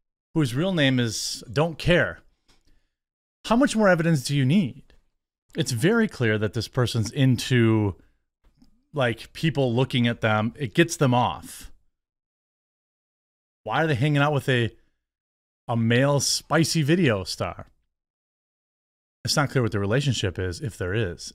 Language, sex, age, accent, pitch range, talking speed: English, male, 30-49, American, 105-145 Hz, 145 wpm